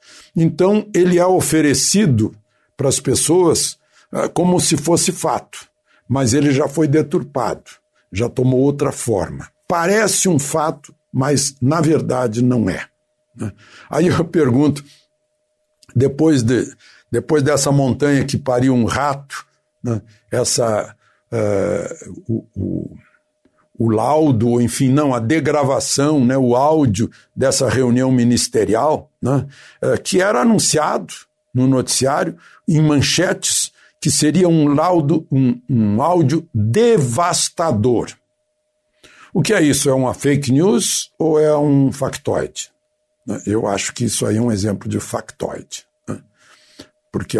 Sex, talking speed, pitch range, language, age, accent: male, 120 wpm, 125-170 Hz, Portuguese, 60-79, Brazilian